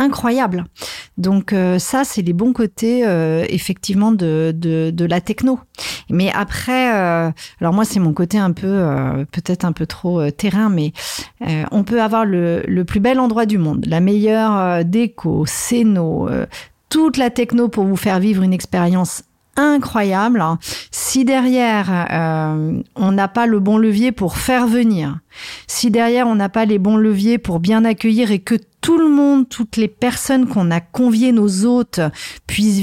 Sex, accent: female, French